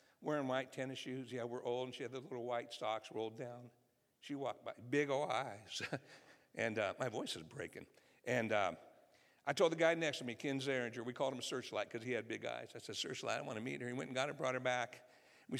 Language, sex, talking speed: English, male, 255 wpm